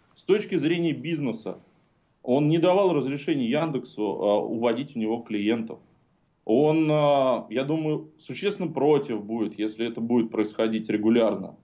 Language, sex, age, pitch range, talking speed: Russian, male, 20-39, 110-165 Hz, 125 wpm